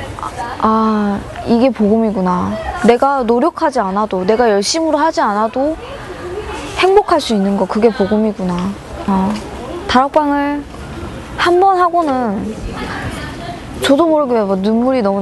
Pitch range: 200-260 Hz